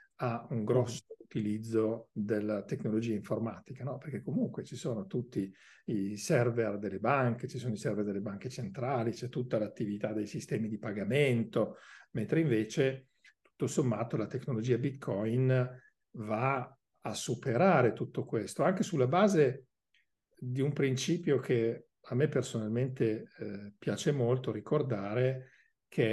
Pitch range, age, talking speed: 110-130 Hz, 50-69, 135 wpm